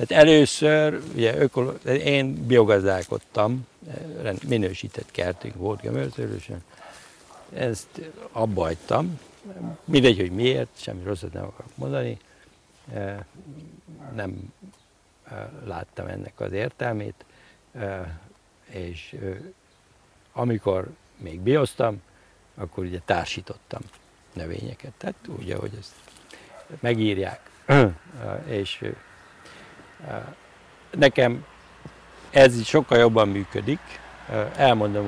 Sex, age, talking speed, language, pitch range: male, 60-79, 80 wpm, Hungarian, 100-130 Hz